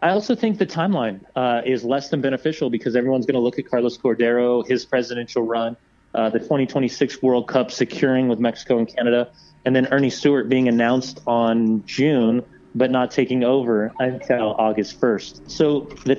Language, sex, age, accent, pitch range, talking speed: English, male, 30-49, American, 115-140 Hz, 180 wpm